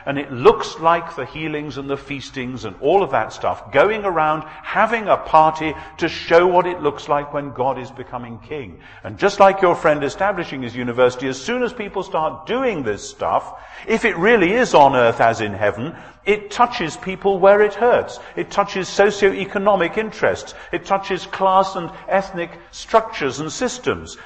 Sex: male